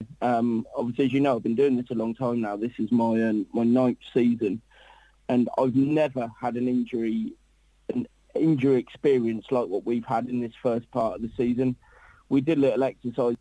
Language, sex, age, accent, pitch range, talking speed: English, male, 30-49, British, 115-135 Hz, 200 wpm